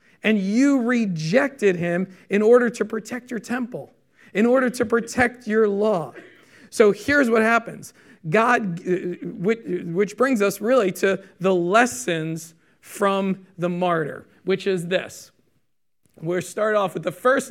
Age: 40-59